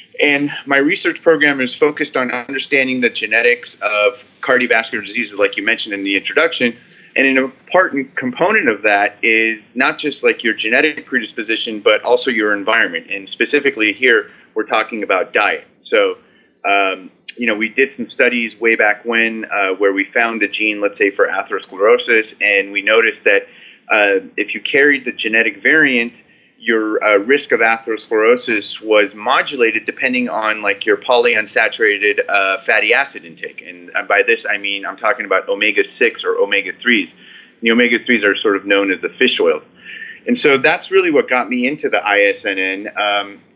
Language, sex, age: English, male, 30-49